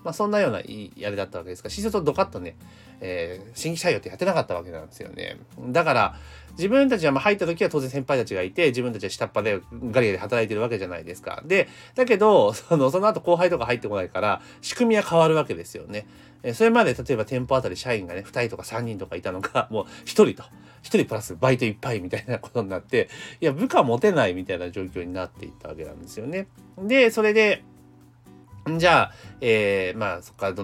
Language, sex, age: Japanese, male, 40-59